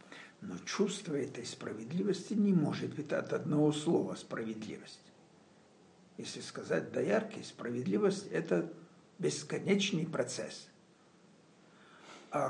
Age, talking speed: 60-79, 95 wpm